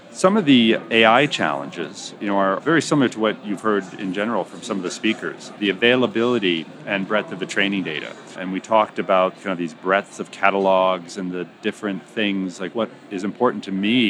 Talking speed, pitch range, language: 215 wpm, 90-105 Hz, English